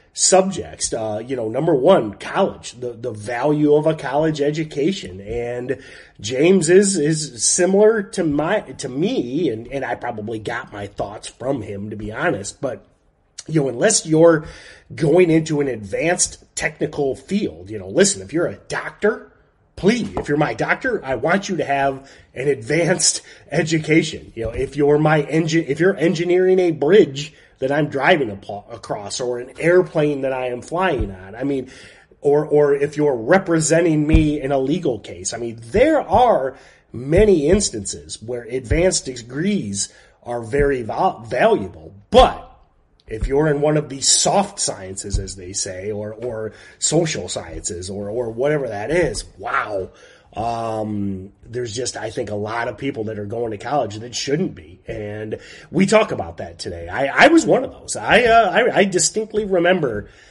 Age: 30-49